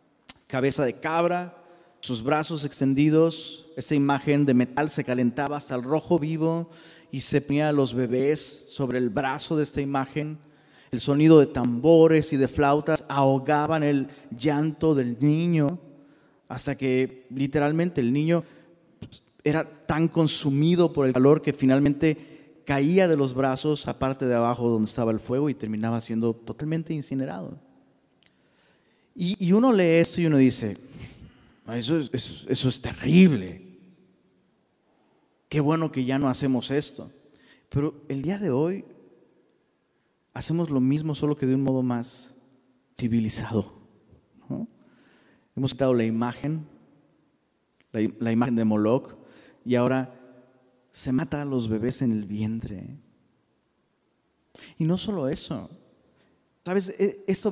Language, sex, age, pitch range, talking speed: Spanish, male, 30-49, 125-155 Hz, 135 wpm